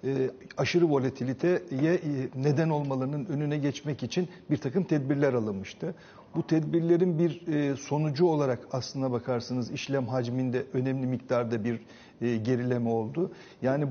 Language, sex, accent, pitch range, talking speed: Turkish, male, native, 130-155 Hz, 110 wpm